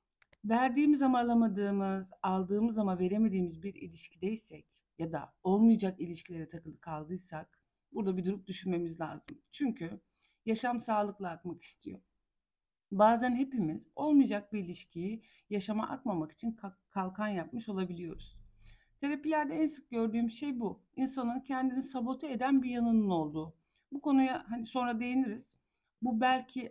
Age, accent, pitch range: 60-79, native, 185-235 Hz